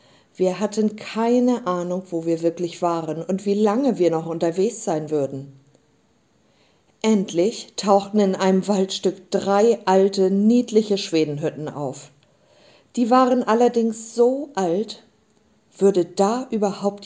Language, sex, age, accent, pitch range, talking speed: German, female, 50-69, German, 170-220 Hz, 120 wpm